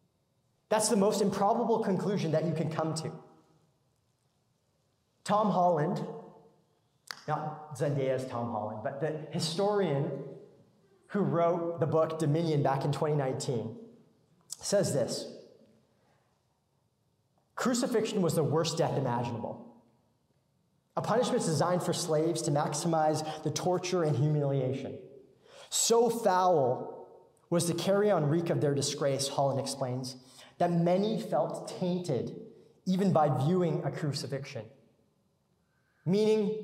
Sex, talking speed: male, 110 wpm